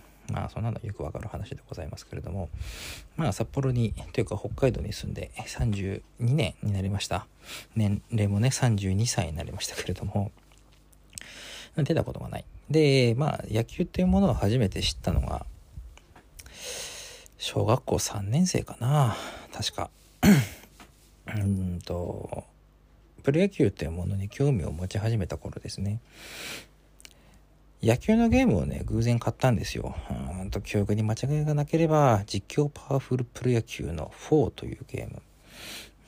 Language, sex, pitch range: Japanese, male, 90-125 Hz